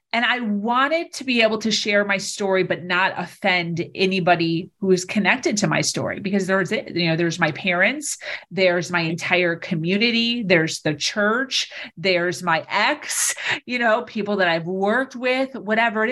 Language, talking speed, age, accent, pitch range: English, 170 wpm, 30-49, American, 180-245 Hz